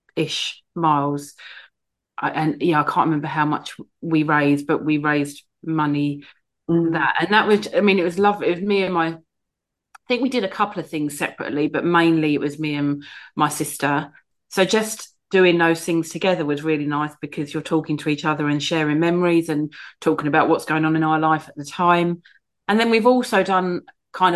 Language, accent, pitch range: English, British, 150-170 Hz